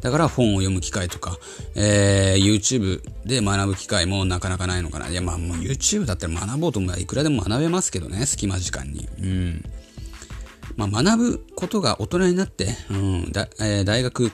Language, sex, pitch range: Japanese, male, 90-120 Hz